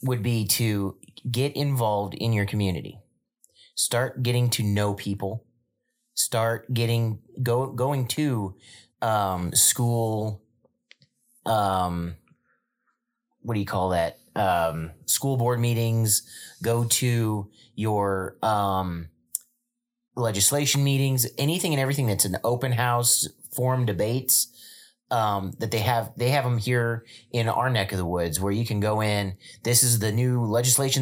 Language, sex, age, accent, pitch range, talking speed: English, male, 30-49, American, 105-130 Hz, 135 wpm